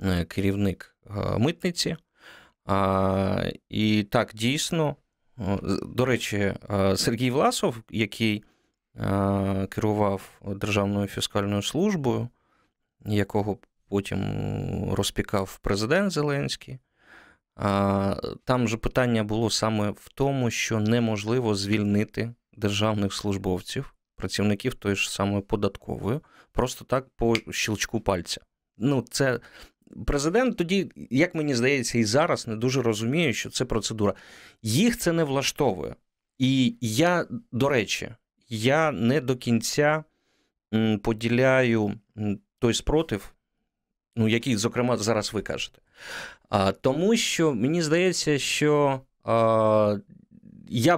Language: Ukrainian